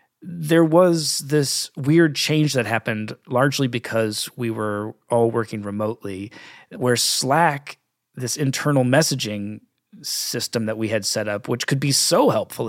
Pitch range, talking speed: 115-140 Hz, 140 wpm